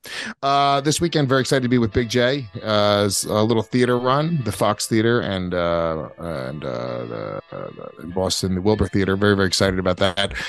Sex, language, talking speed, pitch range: male, English, 185 wpm, 115-140 Hz